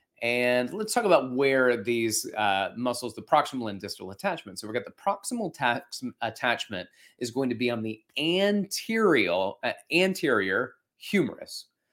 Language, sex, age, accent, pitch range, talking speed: English, male, 30-49, American, 110-135 Hz, 145 wpm